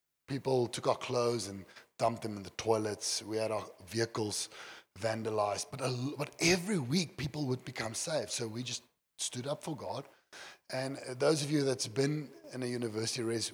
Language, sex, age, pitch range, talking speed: English, male, 30-49, 110-140 Hz, 180 wpm